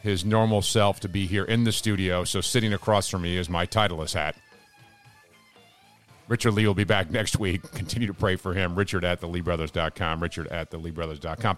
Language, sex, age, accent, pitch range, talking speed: English, male, 50-69, American, 90-120 Hz, 185 wpm